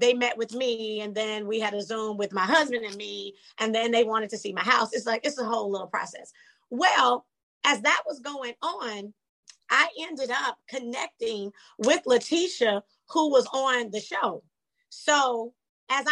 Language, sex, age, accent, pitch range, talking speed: English, female, 30-49, American, 210-265 Hz, 180 wpm